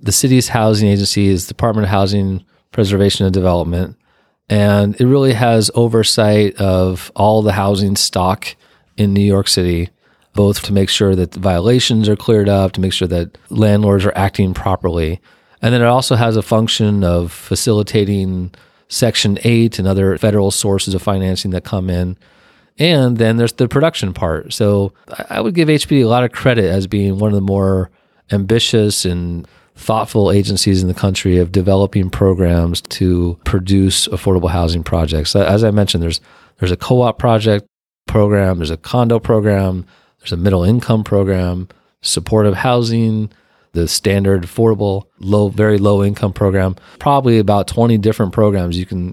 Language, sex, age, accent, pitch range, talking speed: English, male, 30-49, American, 95-110 Hz, 165 wpm